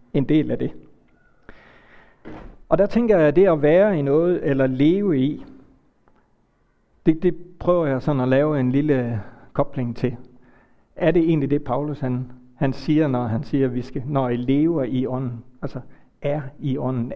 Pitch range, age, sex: 125-150 Hz, 60-79, male